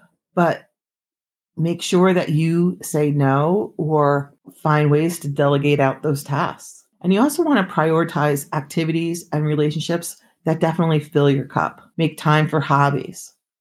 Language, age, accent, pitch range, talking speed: English, 40-59, American, 145-175 Hz, 145 wpm